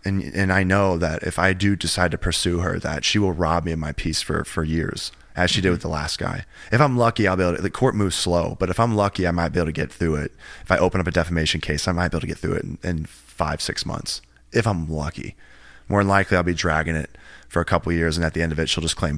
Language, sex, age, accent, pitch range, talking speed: English, male, 20-39, American, 80-95 Hz, 305 wpm